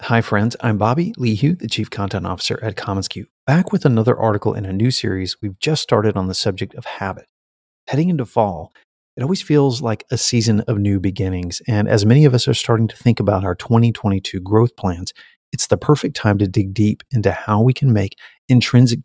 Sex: male